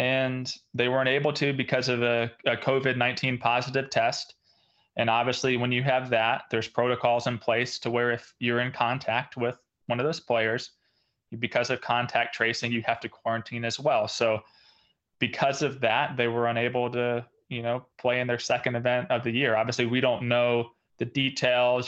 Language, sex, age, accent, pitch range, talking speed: English, male, 20-39, American, 115-130 Hz, 185 wpm